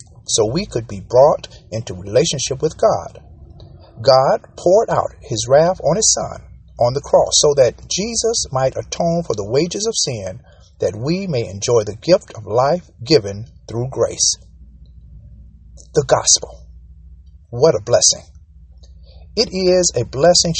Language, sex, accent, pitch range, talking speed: English, male, American, 105-155 Hz, 145 wpm